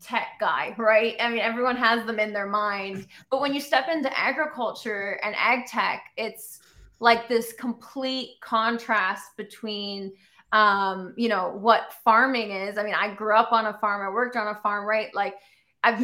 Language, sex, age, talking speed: English, female, 20-39, 180 wpm